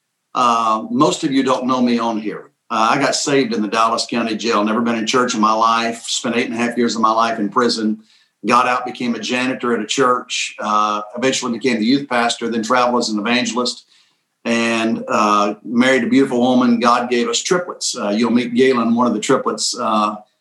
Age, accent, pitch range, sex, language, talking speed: 50-69, American, 115-130 Hz, male, English, 220 wpm